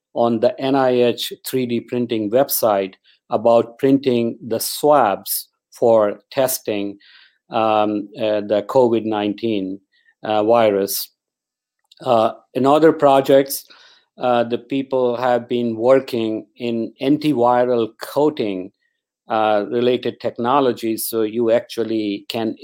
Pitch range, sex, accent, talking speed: 105-125 Hz, male, Indian, 105 wpm